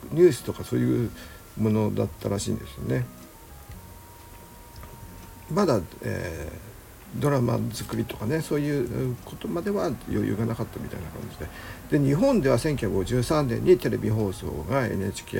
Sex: male